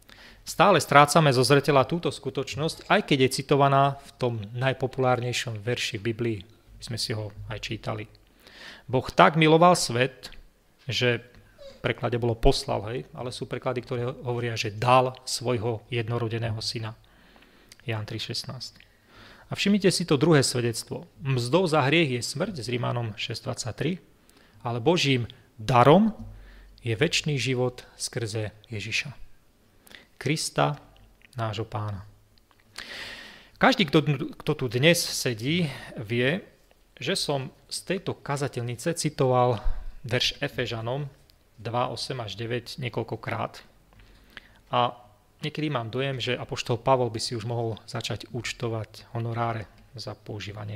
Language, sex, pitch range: Slovak, male, 110-140 Hz